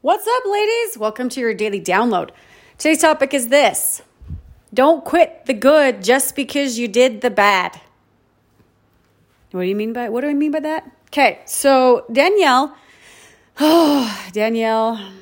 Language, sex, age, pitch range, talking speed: English, female, 30-49, 205-290 Hz, 145 wpm